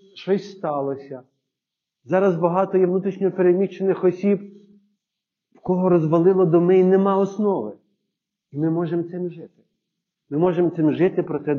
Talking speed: 135 wpm